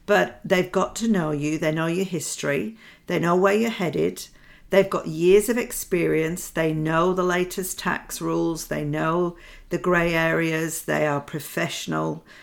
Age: 50-69